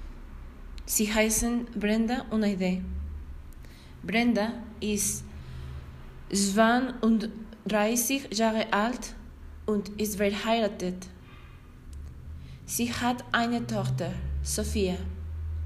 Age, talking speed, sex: 20-39, 70 wpm, female